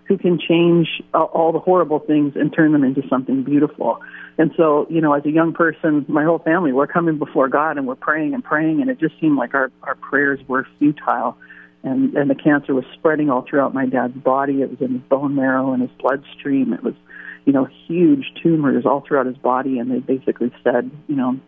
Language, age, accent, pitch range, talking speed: English, 40-59, American, 135-170 Hz, 220 wpm